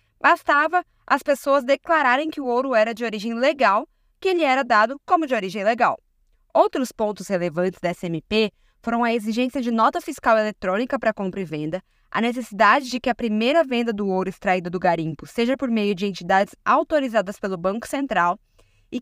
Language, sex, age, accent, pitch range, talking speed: Portuguese, female, 20-39, Brazilian, 205-285 Hz, 180 wpm